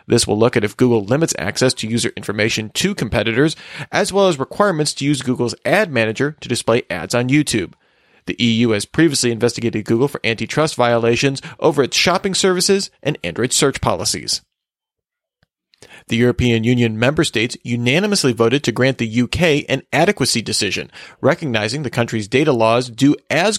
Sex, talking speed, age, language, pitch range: male, 165 wpm, 40-59, English, 115-150 Hz